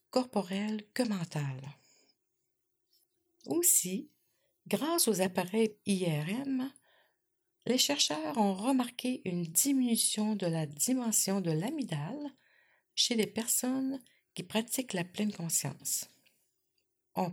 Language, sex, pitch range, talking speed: French, female, 185-250 Hz, 95 wpm